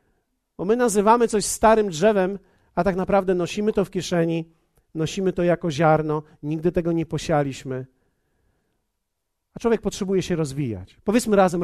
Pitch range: 185-250 Hz